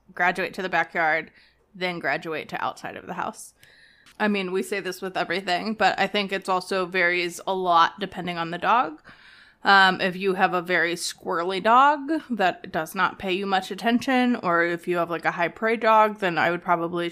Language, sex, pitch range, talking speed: English, female, 175-215 Hz, 205 wpm